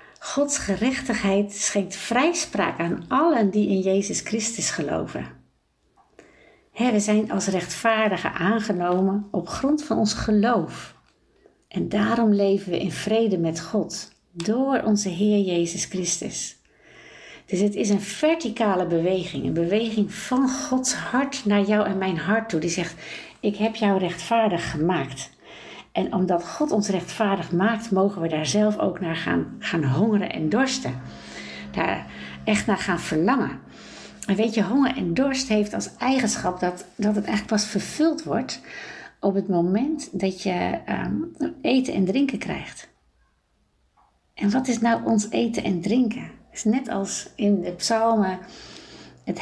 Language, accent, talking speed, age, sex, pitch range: Dutch, Dutch, 150 wpm, 60-79, female, 180-230 Hz